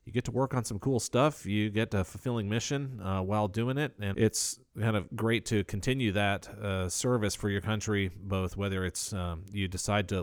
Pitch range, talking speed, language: 95-110 Hz, 210 wpm, English